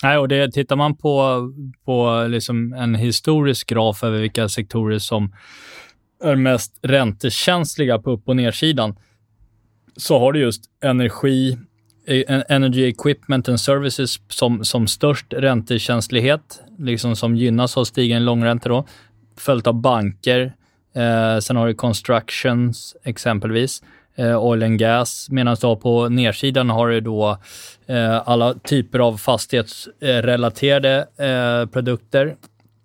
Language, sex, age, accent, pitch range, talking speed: Swedish, male, 20-39, native, 110-130 Hz, 125 wpm